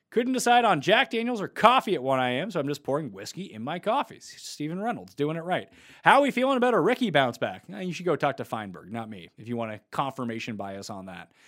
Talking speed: 250 wpm